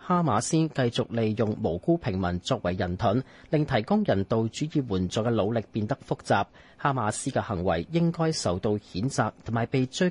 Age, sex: 30-49, male